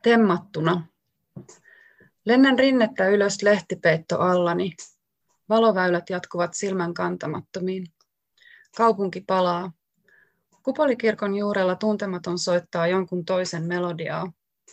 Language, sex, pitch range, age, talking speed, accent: Finnish, female, 175-210 Hz, 30-49, 75 wpm, native